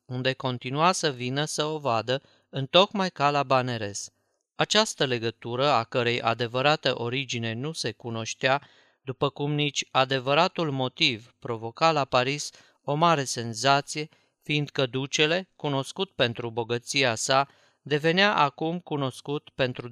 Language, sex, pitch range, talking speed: Romanian, male, 120-155 Hz, 125 wpm